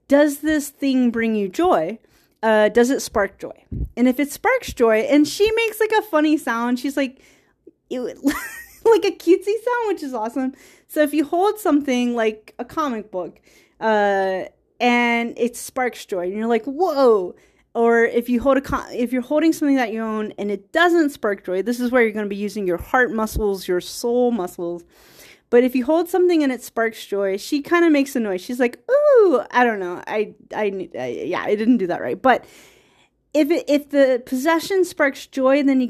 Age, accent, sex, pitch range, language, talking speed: 30-49, American, female, 220-305 Hz, English, 205 wpm